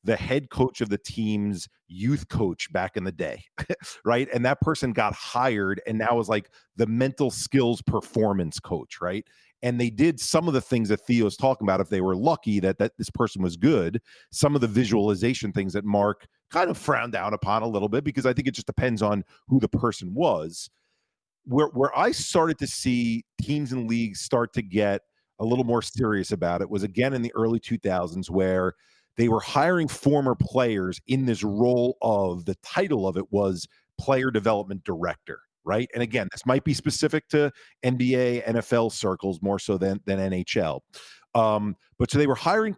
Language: English